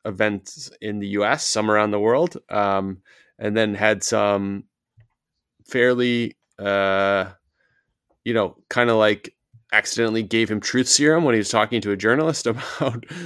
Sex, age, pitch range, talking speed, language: male, 20-39, 100-120 Hz, 150 wpm, English